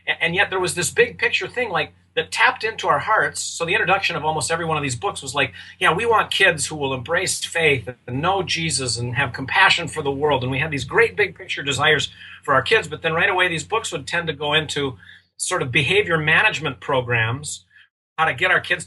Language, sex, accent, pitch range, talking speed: English, male, American, 130-170 Hz, 240 wpm